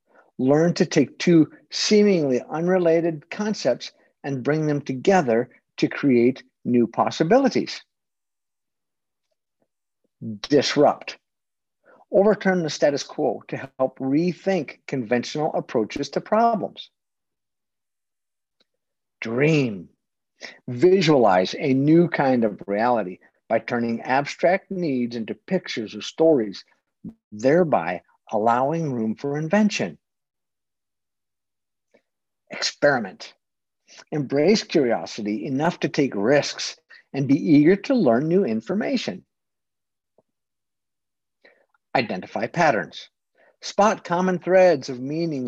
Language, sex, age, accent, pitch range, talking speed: English, male, 50-69, American, 115-180 Hz, 90 wpm